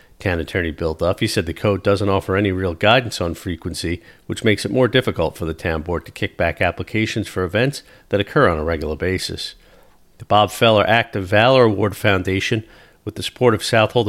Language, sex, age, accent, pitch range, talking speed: English, male, 50-69, American, 90-115 Hz, 210 wpm